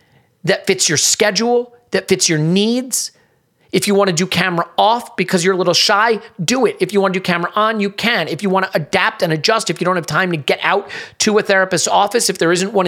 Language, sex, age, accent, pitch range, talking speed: English, male, 40-59, American, 160-195 Hz, 240 wpm